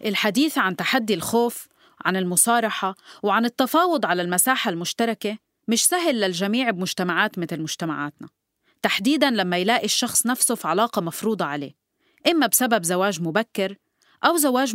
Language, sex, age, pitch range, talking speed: Arabic, female, 30-49, 180-250 Hz, 130 wpm